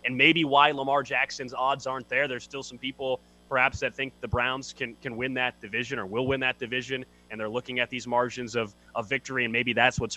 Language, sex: English, male